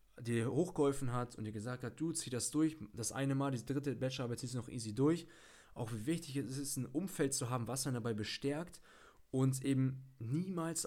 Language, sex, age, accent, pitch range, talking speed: German, male, 20-39, German, 120-145 Hz, 215 wpm